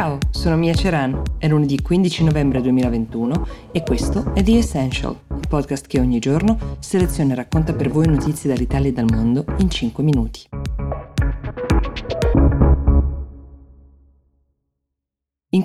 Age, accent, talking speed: 20-39, native, 125 wpm